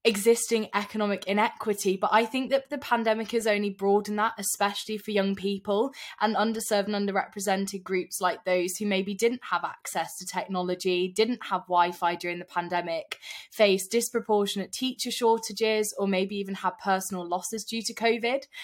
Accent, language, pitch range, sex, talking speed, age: British, English, 180-215 Hz, female, 165 wpm, 20-39